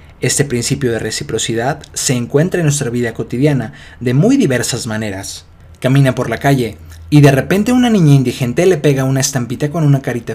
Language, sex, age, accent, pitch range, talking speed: Spanish, male, 30-49, Mexican, 115-145 Hz, 180 wpm